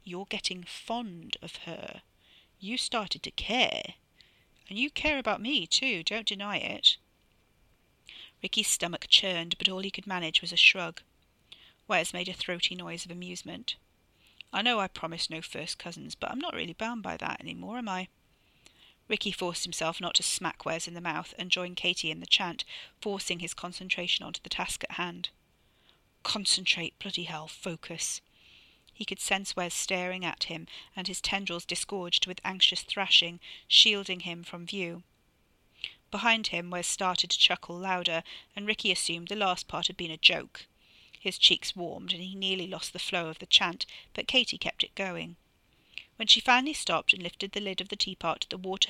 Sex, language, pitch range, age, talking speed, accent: female, English, 175-205 Hz, 40-59, 180 wpm, British